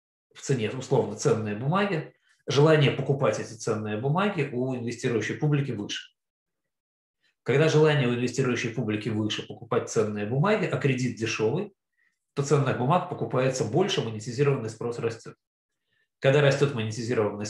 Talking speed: 125 wpm